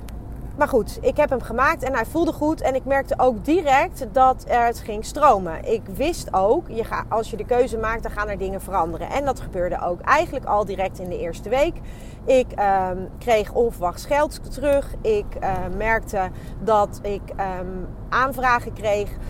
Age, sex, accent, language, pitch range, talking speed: 30-49, female, Dutch, Dutch, 215-275 Hz, 175 wpm